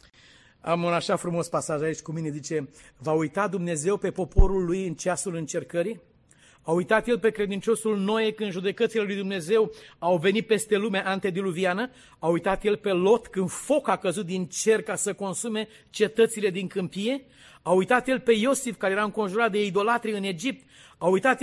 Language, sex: Romanian, male